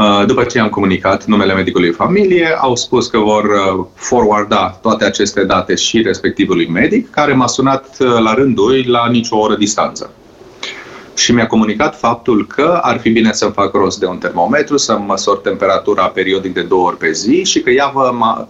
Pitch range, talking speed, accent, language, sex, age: 105-130 Hz, 180 wpm, native, Romanian, male, 30-49